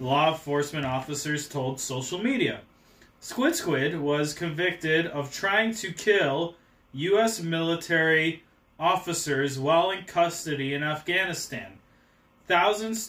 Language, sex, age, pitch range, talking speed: English, male, 20-39, 140-180 Hz, 105 wpm